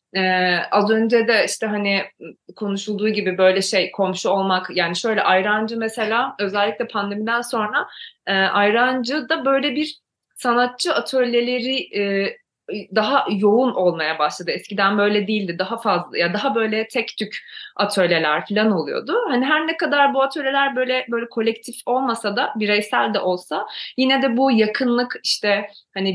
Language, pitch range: Turkish, 190-250 Hz